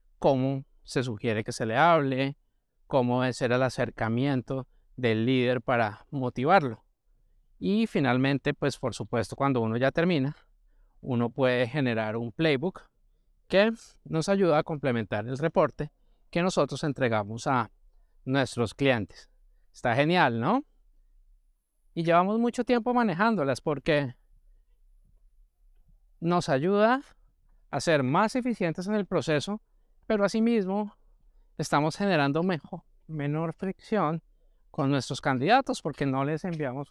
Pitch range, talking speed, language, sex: 125-165 Hz, 120 wpm, Spanish, male